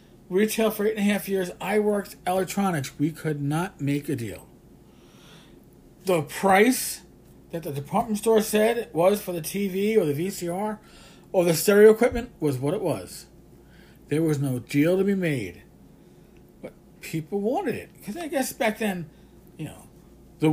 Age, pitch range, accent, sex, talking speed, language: 40-59, 155-205 Hz, American, male, 170 wpm, English